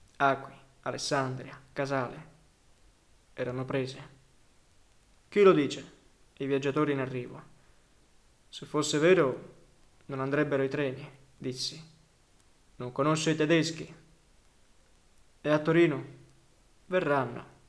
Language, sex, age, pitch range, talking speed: Italian, male, 20-39, 135-155 Hz, 95 wpm